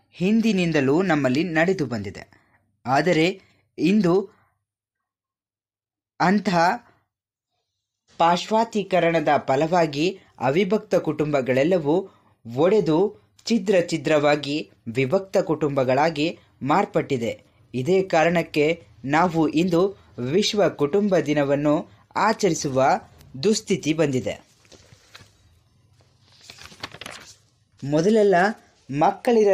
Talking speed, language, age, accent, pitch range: 55 wpm, English, 20-39, Indian, 130-185 Hz